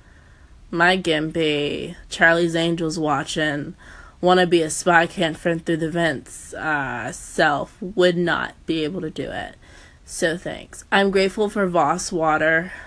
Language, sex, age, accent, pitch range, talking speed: English, female, 20-39, American, 155-185 Hz, 140 wpm